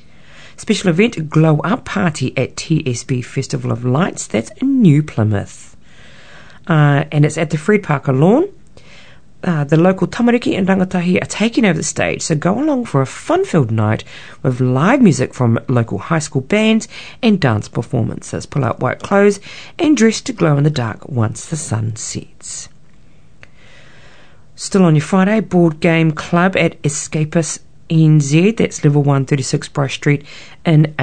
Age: 40-59